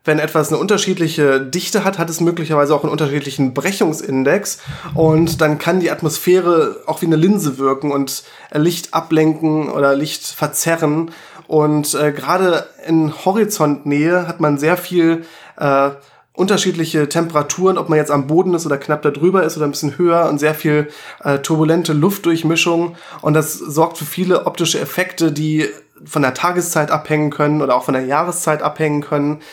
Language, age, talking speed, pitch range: German, 20-39, 165 wpm, 150-175 Hz